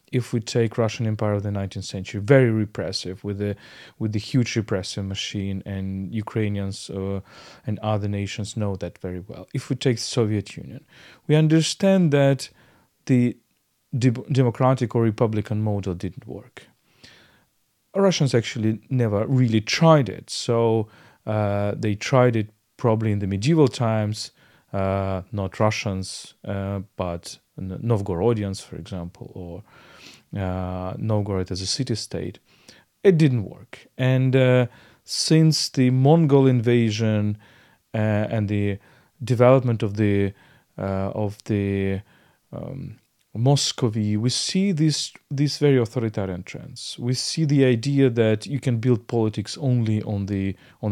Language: English